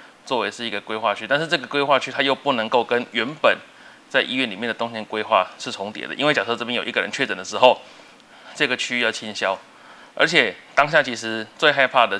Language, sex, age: Chinese, male, 20-39